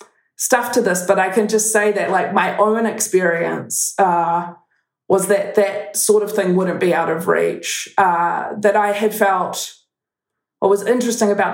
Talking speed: 175 wpm